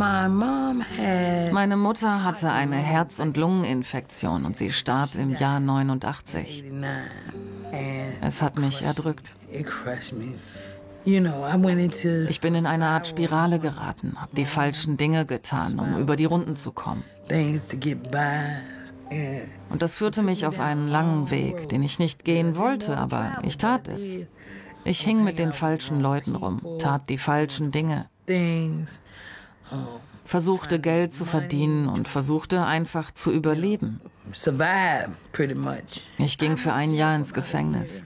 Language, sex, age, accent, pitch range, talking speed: German, female, 40-59, German, 135-165 Hz, 125 wpm